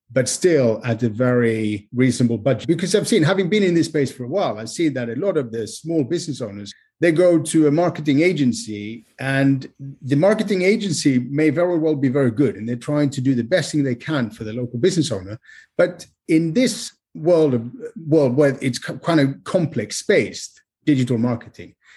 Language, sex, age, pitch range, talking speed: English, male, 30-49, 115-155 Hz, 200 wpm